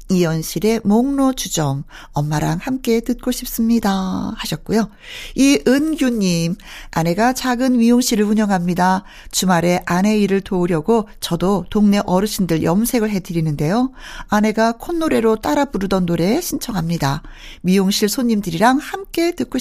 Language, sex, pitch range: Korean, female, 180-255 Hz